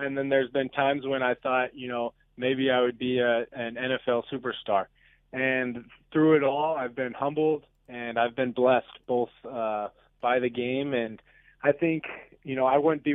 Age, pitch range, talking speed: 20-39, 120-135 Hz, 185 wpm